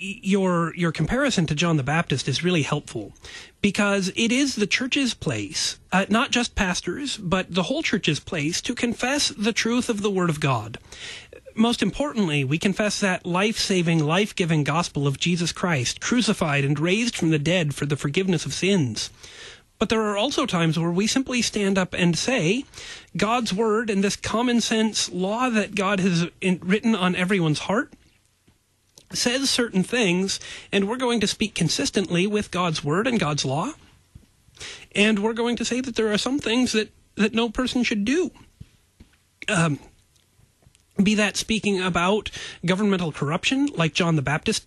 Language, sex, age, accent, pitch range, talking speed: English, male, 30-49, American, 170-220 Hz, 165 wpm